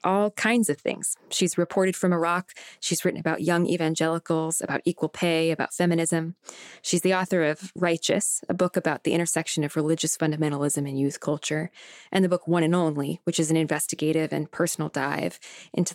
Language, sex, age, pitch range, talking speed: English, female, 20-39, 155-180 Hz, 180 wpm